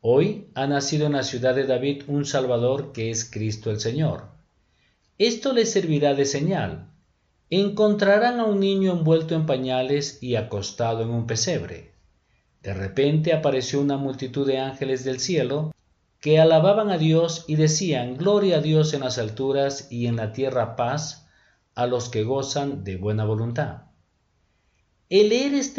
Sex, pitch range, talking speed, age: male, 120-160 Hz, 160 wpm, 50-69